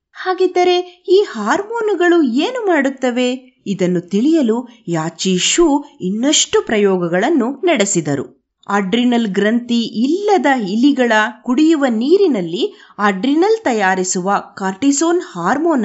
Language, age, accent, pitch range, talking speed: Kannada, 20-39, native, 200-310 Hz, 80 wpm